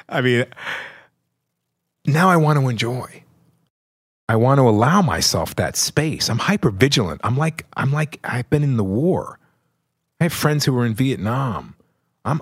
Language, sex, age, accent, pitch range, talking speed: English, male, 40-59, American, 110-140 Hz, 160 wpm